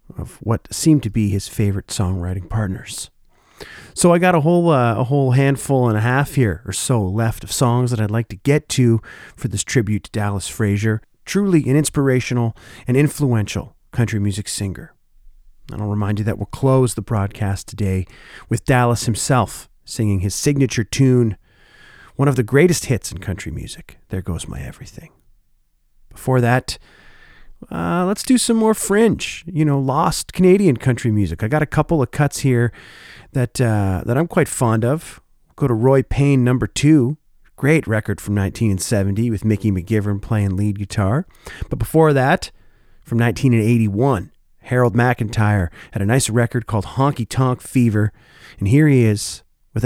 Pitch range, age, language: 105-135 Hz, 40-59, English